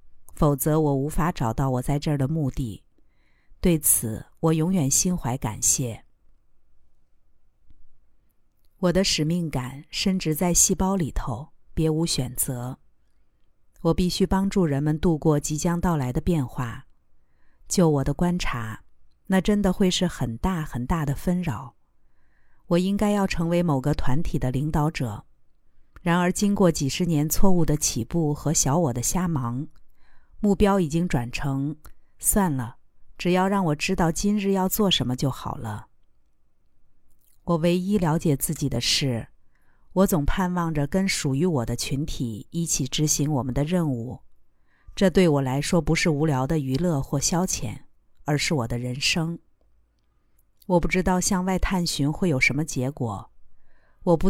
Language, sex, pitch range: Chinese, female, 135-180 Hz